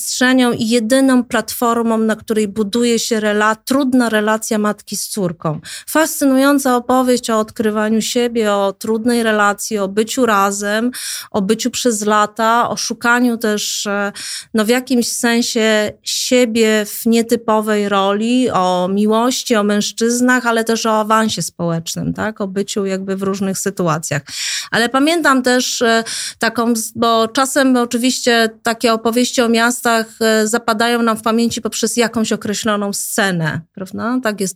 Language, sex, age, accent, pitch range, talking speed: Polish, female, 30-49, native, 210-235 Hz, 135 wpm